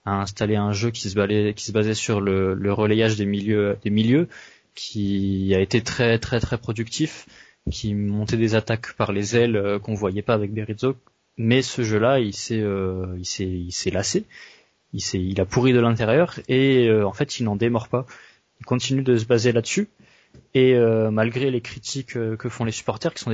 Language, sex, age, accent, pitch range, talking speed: French, male, 20-39, French, 105-125 Hz, 210 wpm